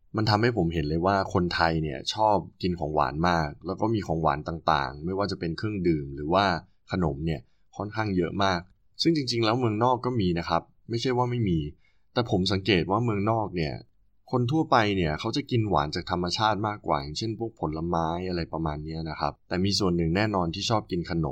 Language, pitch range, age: Thai, 80-105 Hz, 20-39